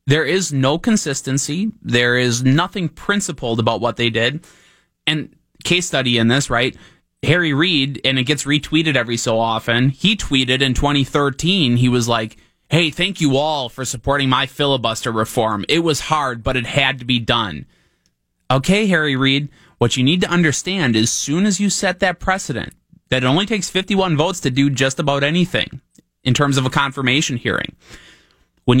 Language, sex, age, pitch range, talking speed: English, male, 20-39, 120-165 Hz, 180 wpm